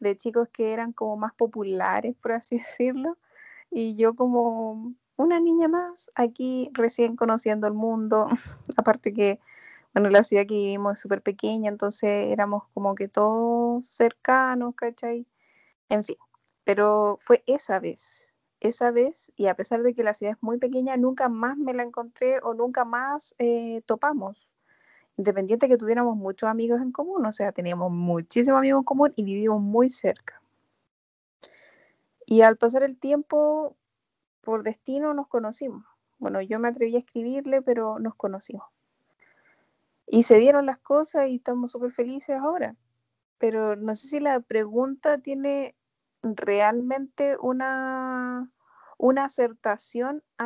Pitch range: 215-260 Hz